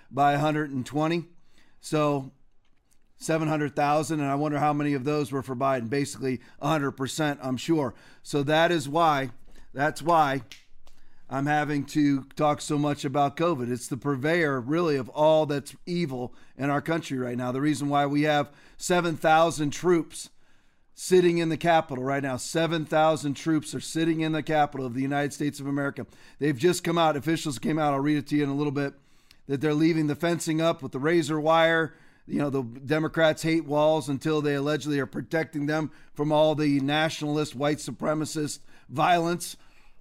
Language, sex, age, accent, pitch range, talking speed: English, male, 40-59, American, 140-160 Hz, 175 wpm